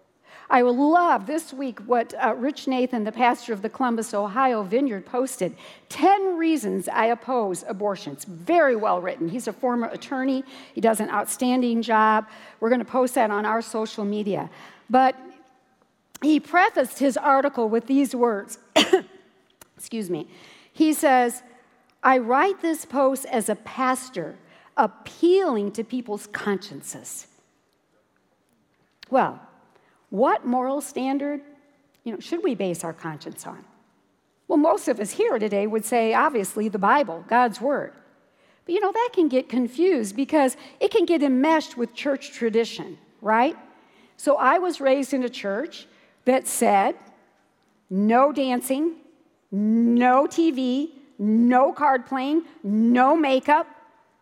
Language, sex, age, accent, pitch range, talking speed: English, female, 60-79, American, 225-300 Hz, 135 wpm